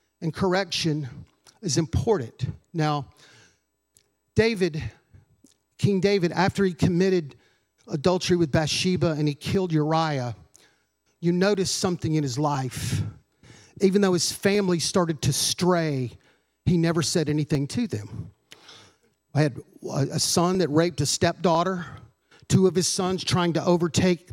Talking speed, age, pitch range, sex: 130 wpm, 50-69, 145-195 Hz, male